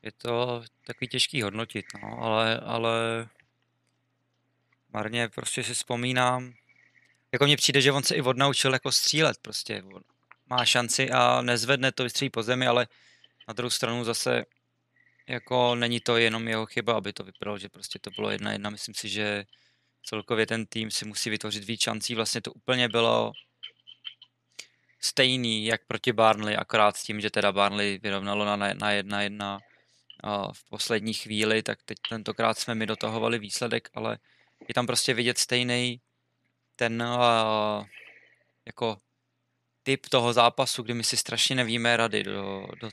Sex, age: male, 20-39